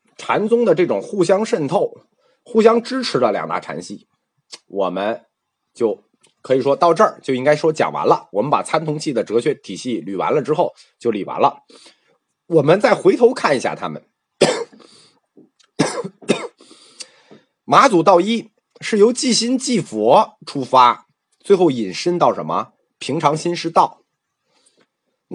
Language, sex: Chinese, male